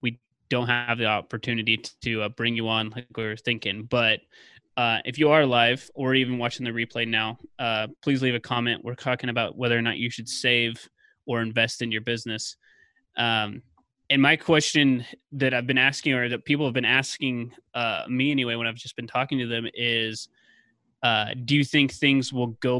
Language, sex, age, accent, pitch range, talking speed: English, male, 20-39, American, 115-130 Hz, 200 wpm